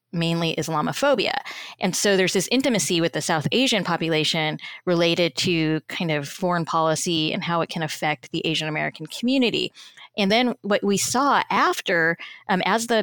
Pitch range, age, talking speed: 165-205 Hz, 20-39, 165 wpm